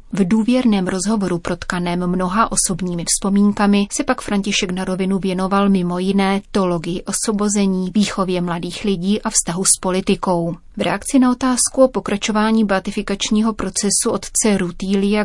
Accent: native